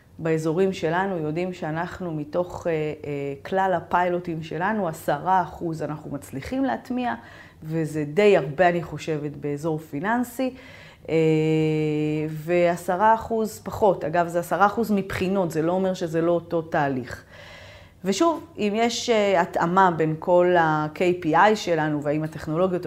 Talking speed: 120 wpm